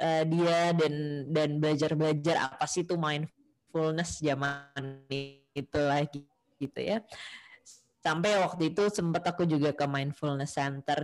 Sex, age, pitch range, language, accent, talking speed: female, 20-39, 150-190 Hz, Indonesian, native, 120 wpm